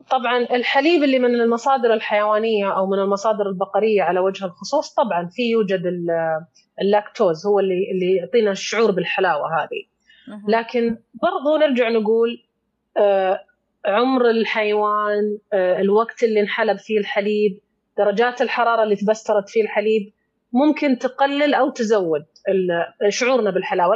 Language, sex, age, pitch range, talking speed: English, female, 30-49, 200-245 Hz, 120 wpm